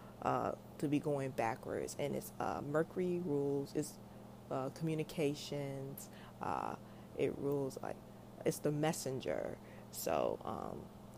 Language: English